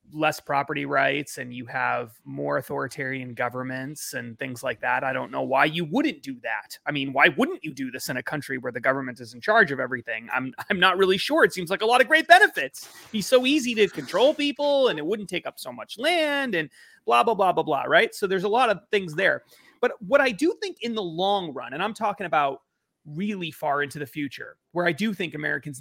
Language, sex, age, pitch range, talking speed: English, male, 30-49, 150-200 Hz, 240 wpm